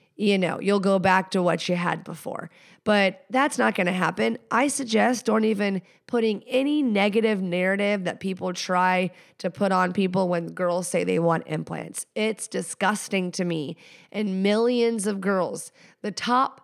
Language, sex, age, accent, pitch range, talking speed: English, female, 30-49, American, 185-215 Hz, 170 wpm